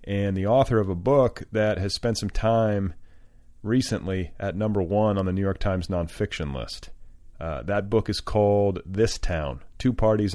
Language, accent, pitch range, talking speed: English, American, 85-105 Hz, 180 wpm